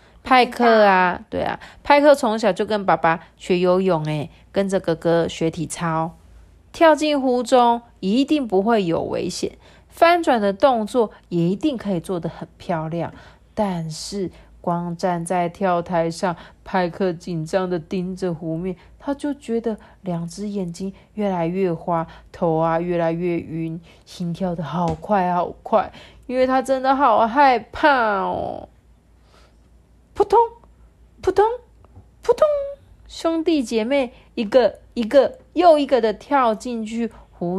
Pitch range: 175-265 Hz